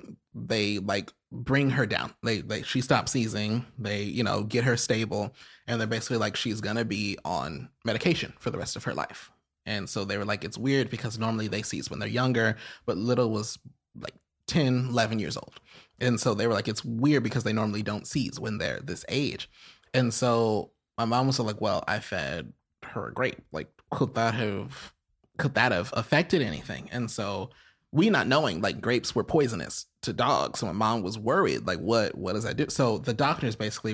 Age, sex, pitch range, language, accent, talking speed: 20-39, male, 105-125 Hz, English, American, 210 wpm